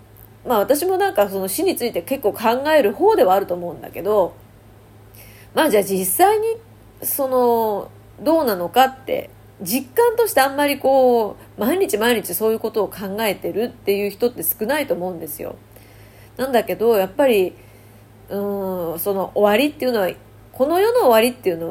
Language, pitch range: Japanese, 180-260 Hz